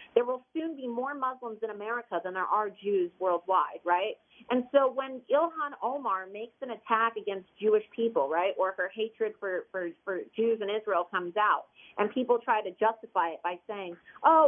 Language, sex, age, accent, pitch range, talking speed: English, female, 40-59, American, 210-265 Hz, 190 wpm